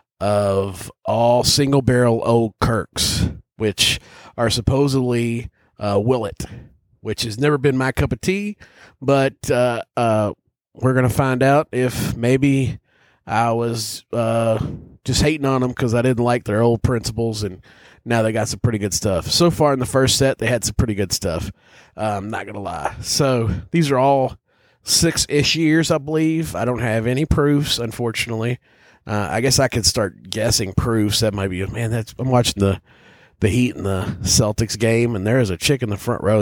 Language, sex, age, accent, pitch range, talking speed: English, male, 30-49, American, 105-130 Hz, 190 wpm